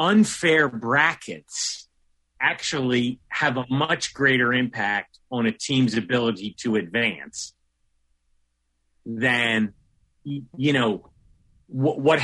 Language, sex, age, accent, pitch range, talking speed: English, male, 40-59, American, 105-140 Hz, 90 wpm